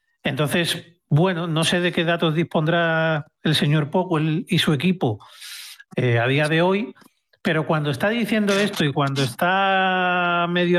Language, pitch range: Spanish, 140-180 Hz